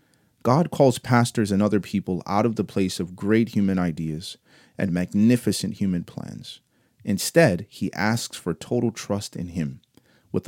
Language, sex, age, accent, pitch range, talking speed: English, male, 30-49, American, 90-115 Hz, 155 wpm